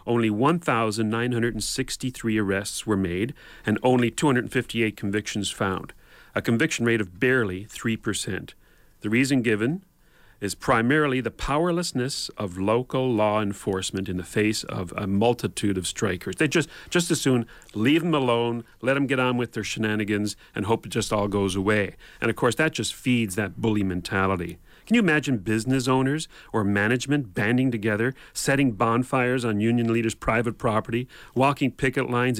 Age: 40-59